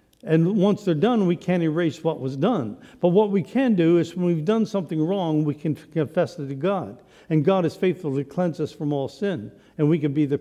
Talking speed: 240 wpm